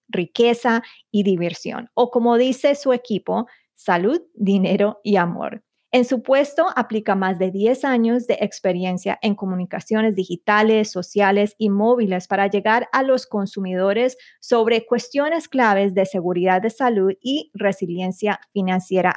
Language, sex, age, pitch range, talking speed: English, female, 30-49, 195-235 Hz, 135 wpm